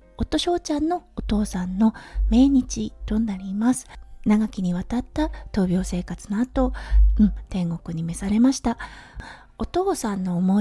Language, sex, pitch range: Japanese, female, 195-260 Hz